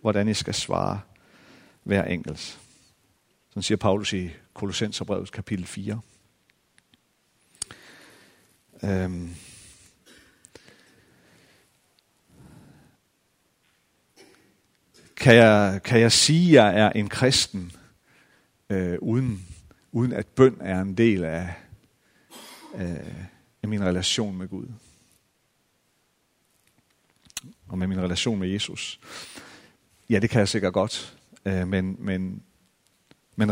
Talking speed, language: 95 wpm, Danish